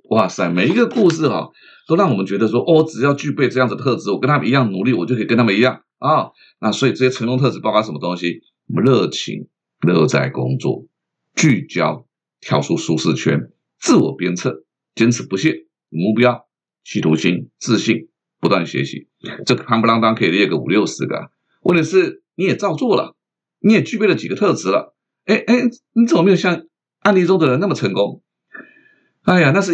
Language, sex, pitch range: Chinese, male, 120-185 Hz